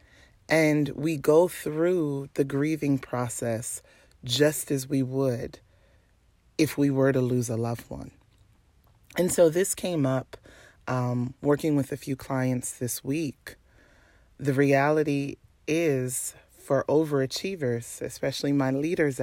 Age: 30-49